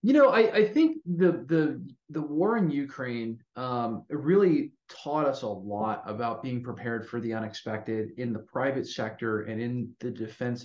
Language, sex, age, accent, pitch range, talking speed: English, male, 30-49, American, 115-135 Hz, 175 wpm